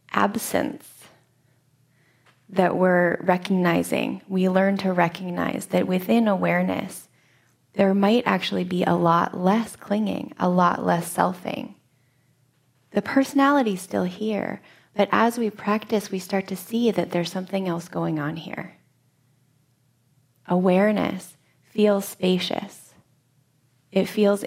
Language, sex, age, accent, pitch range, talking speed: English, female, 20-39, American, 135-200 Hz, 120 wpm